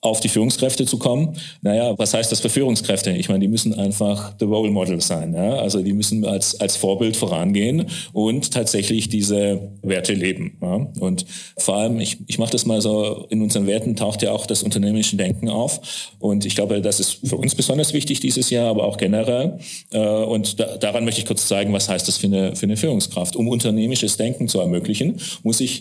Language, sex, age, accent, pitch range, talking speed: German, male, 40-59, German, 100-125 Hz, 205 wpm